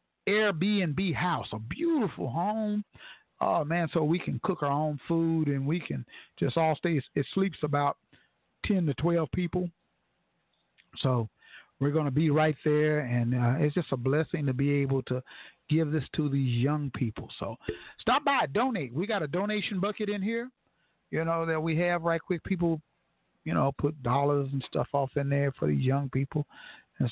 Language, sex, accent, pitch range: English, male, American, 140-185 Hz